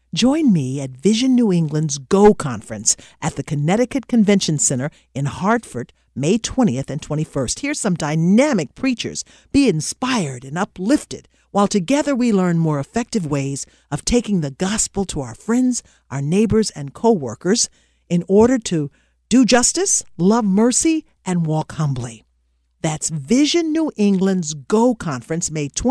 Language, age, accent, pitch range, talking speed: English, 50-69, American, 145-230 Hz, 145 wpm